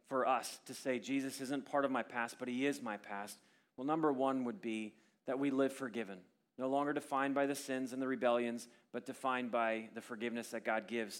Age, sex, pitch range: 30-49, male, 125-165 Hz